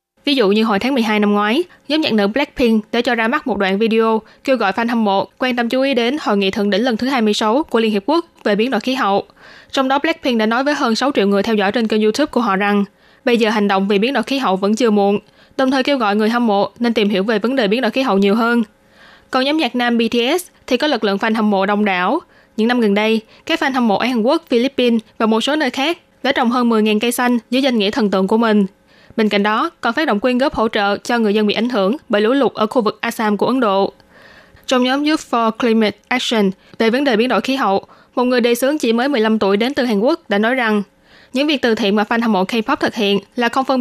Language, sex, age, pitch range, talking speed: Vietnamese, female, 20-39, 210-265 Hz, 280 wpm